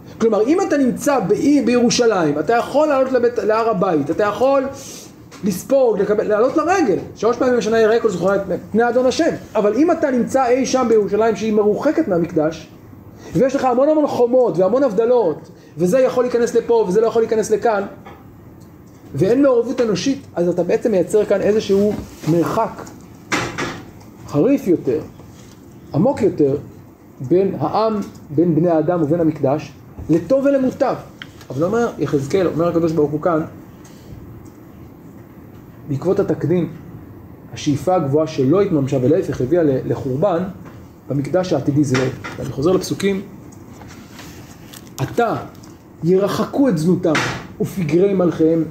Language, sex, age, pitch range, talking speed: Hebrew, male, 30-49, 150-230 Hz, 130 wpm